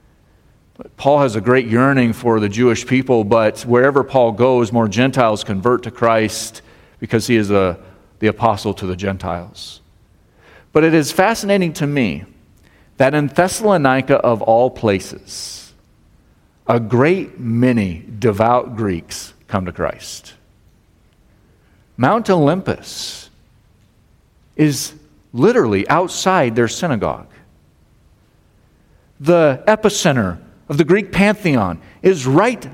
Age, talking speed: 40-59, 115 wpm